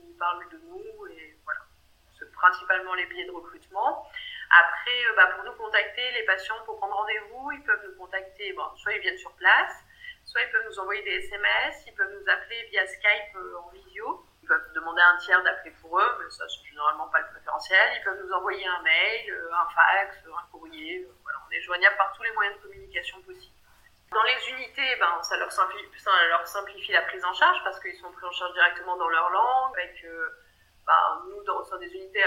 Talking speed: 210 wpm